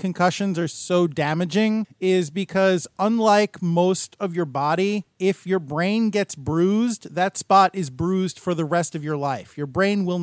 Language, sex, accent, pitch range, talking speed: English, male, American, 150-180 Hz, 170 wpm